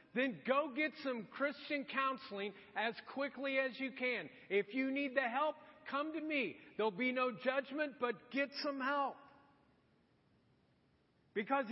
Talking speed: 145 wpm